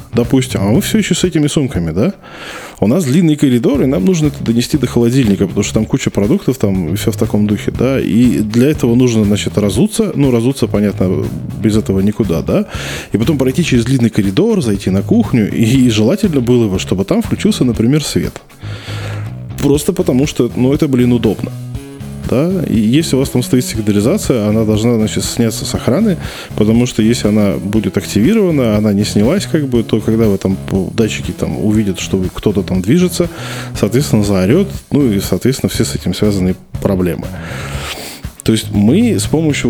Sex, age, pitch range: male, 20-39, 100-130 Hz